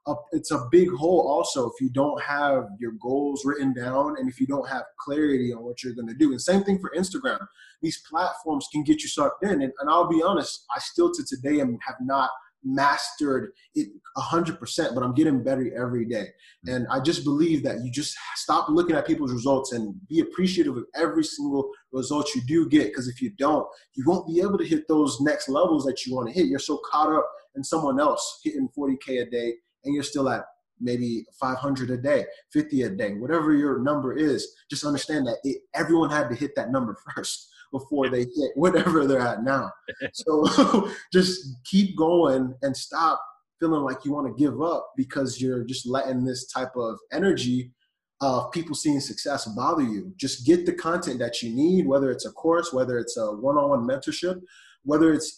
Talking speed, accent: 200 wpm, American